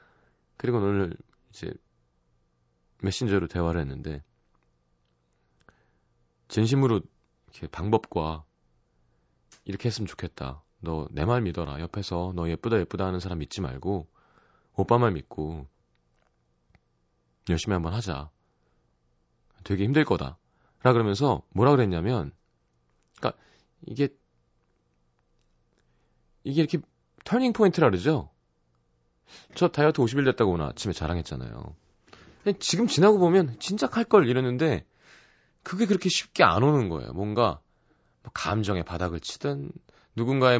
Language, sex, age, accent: Korean, male, 30-49, native